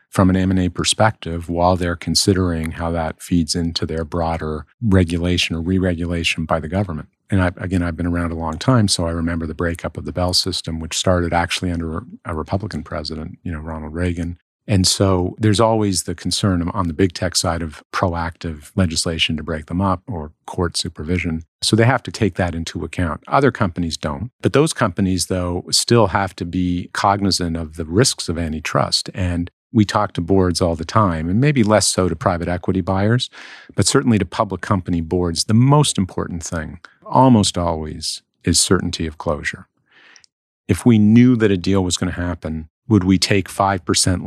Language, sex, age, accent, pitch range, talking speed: English, male, 50-69, American, 85-100 Hz, 190 wpm